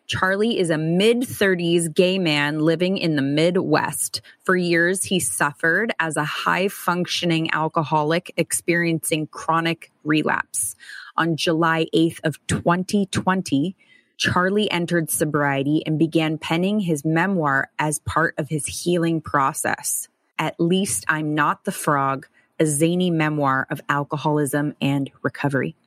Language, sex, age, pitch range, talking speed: English, female, 20-39, 155-185 Hz, 125 wpm